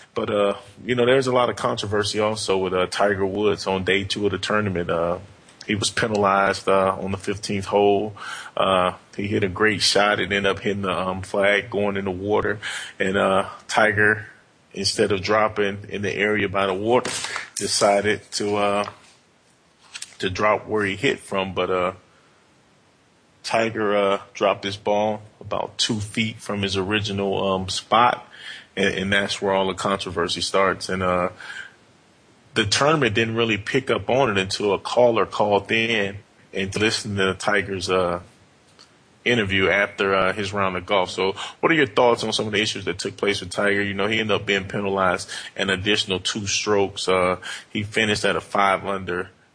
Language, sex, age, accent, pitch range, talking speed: English, male, 20-39, American, 95-105 Hz, 180 wpm